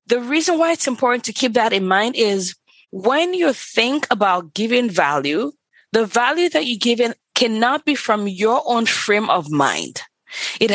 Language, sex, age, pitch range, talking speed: English, female, 20-39, 185-240 Hz, 175 wpm